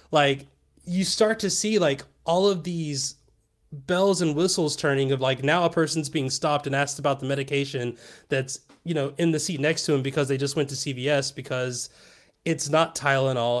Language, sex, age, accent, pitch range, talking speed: English, male, 20-39, American, 130-165 Hz, 195 wpm